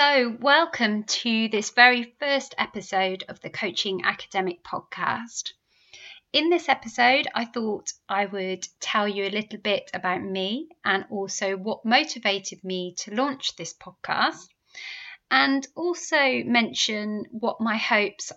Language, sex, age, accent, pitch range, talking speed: English, female, 30-49, British, 195-245 Hz, 135 wpm